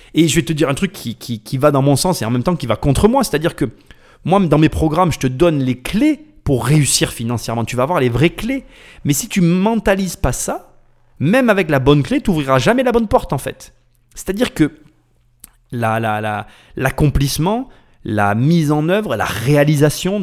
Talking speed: 220 wpm